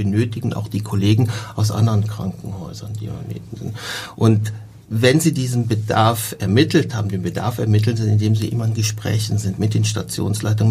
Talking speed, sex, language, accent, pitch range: 170 wpm, male, German, German, 110-125 Hz